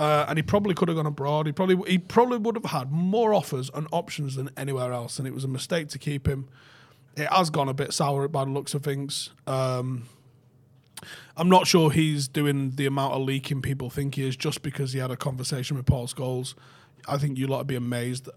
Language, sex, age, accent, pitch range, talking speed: English, male, 30-49, British, 130-155 Hz, 230 wpm